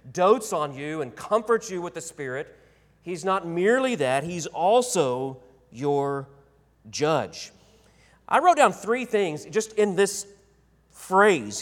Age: 40-59